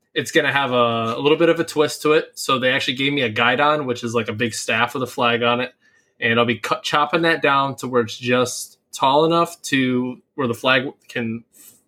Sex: male